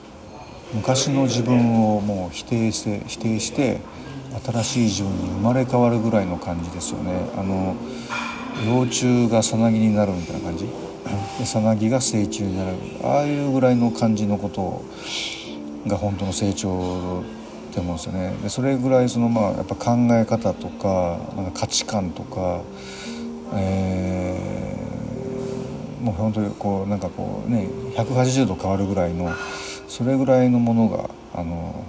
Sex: male